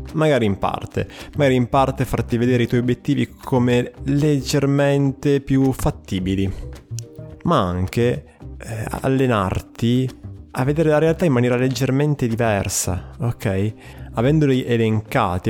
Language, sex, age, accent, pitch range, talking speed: Italian, male, 20-39, native, 100-130 Hz, 110 wpm